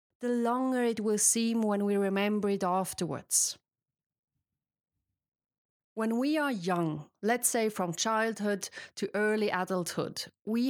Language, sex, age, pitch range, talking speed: English, female, 30-49, 190-235 Hz, 125 wpm